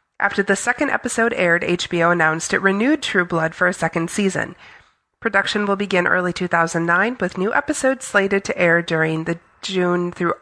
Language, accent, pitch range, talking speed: English, American, 170-210 Hz, 175 wpm